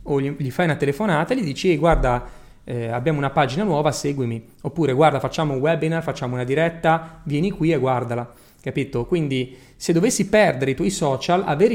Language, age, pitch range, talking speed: Italian, 30-49, 130-175 Hz, 185 wpm